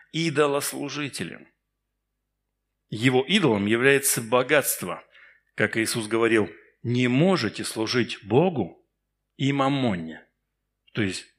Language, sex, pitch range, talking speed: Russian, male, 120-180 Hz, 85 wpm